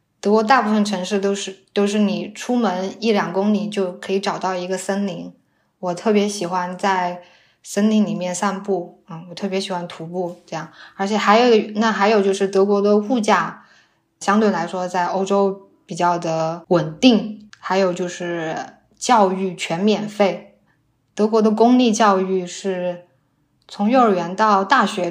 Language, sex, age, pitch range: Chinese, female, 10-29, 180-210 Hz